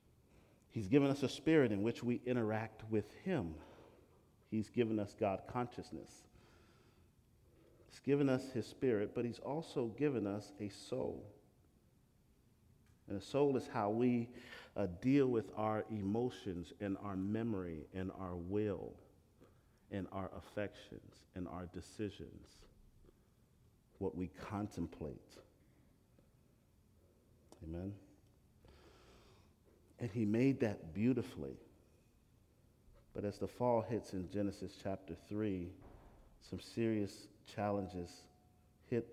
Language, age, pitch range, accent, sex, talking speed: English, 40-59, 95-115 Hz, American, male, 110 wpm